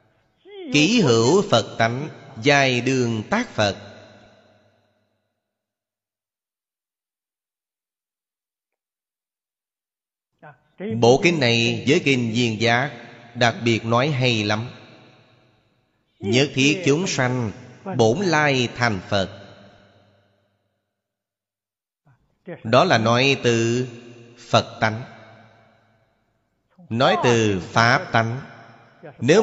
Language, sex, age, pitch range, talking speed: Vietnamese, male, 30-49, 105-130 Hz, 80 wpm